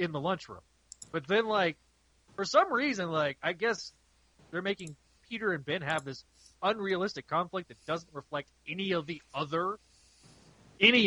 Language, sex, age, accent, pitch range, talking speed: English, male, 20-39, American, 125-180 Hz, 155 wpm